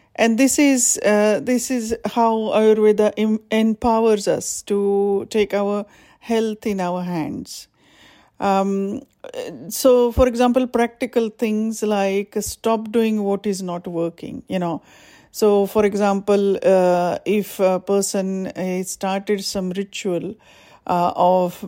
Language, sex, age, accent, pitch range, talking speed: English, female, 50-69, Indian, 185-220 Hz, 125 wpm